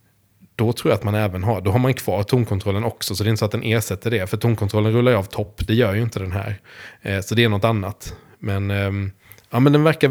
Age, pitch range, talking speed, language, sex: 20-39, 100-120 Hz, 255 wpm, English, male